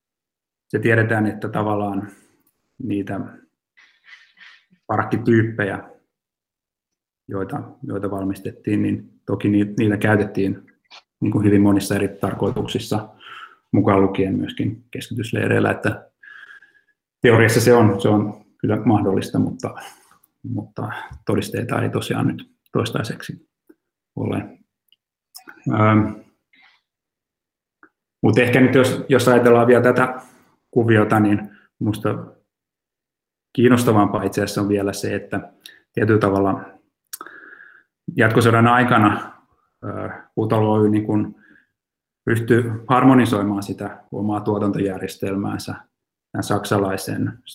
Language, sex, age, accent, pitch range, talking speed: Finnish, male, 30-49, native, 100-120 Hz, 85 wpm